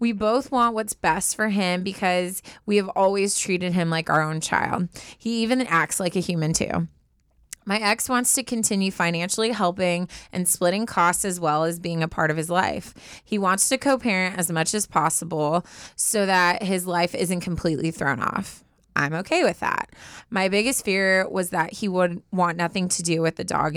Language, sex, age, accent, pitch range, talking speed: English, female, 20-39, American, 170-205 Hz, 195 wpm